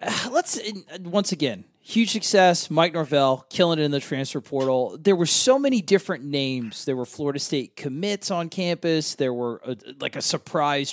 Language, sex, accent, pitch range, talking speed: English, male, American, 140-185 Hz, 175 wpm